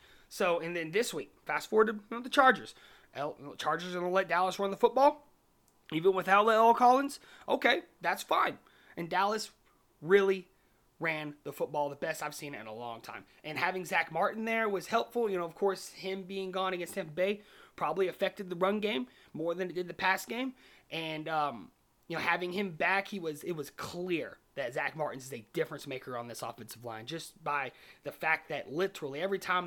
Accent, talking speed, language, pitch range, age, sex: American, 210 wpm, English, 155-200 Hz, 30-49, male